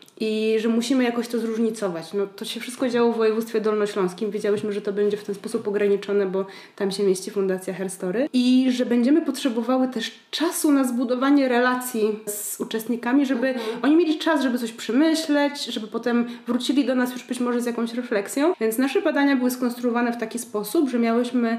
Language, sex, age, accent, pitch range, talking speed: Polish, female, 20-39, native, 220-265 Hz, 185 wpm